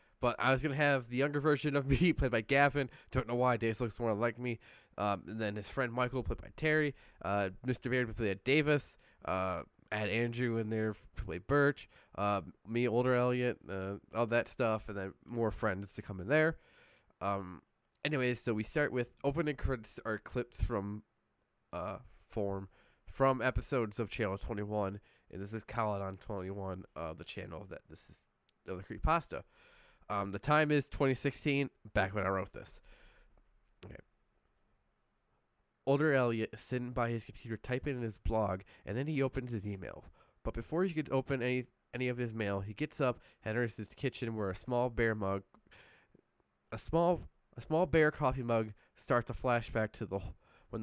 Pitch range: 100-130 Hz